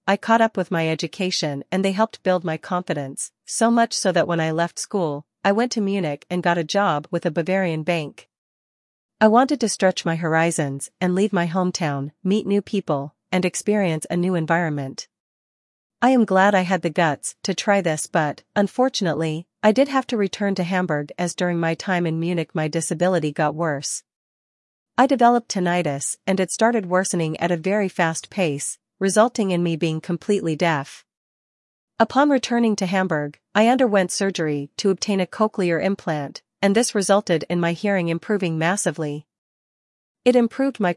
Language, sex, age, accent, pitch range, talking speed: English, female, 40-59, American, 165-200 Hz, 175 wpm